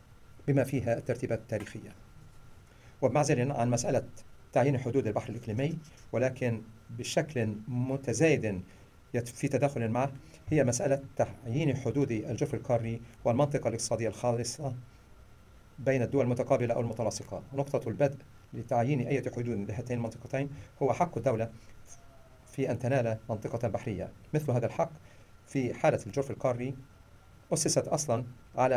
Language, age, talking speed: English, 40-59, 115 wpm